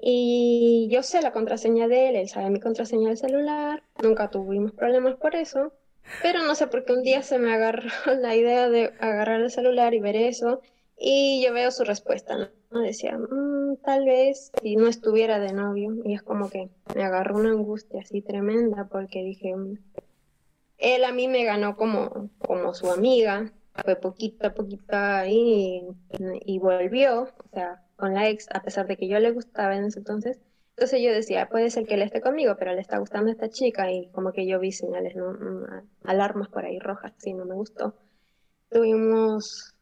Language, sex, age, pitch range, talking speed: Spanish, female, 20-39, 200-250 Hz, 195 wpm